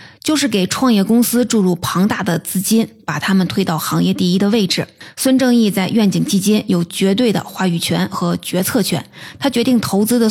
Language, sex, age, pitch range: Chinese, female, 20-39, 185-220 Hz